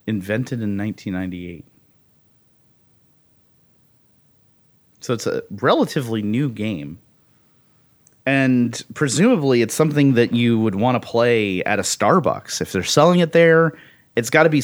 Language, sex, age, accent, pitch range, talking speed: English, male, 30-49, American, 105-135 Hz, 125 wpm